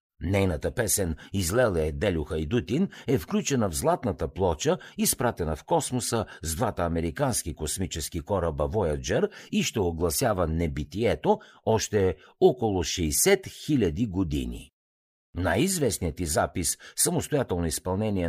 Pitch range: 85-120 Hz